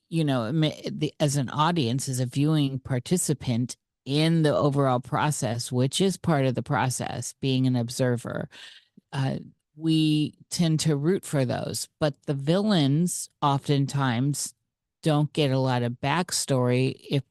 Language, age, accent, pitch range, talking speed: English, 40-59, American, 125-150 Hz, 140 wpm